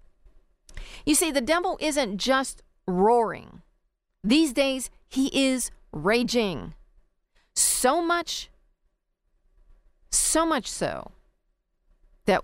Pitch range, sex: 180-260 Hz, female